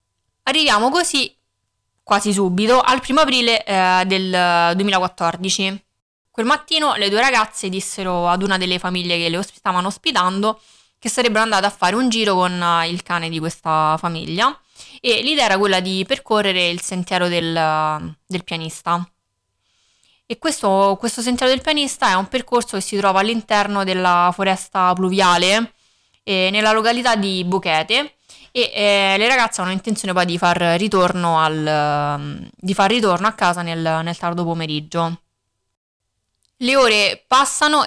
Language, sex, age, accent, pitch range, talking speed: Italian, female, 20-39, native, 170-215 Hz, 145 wpm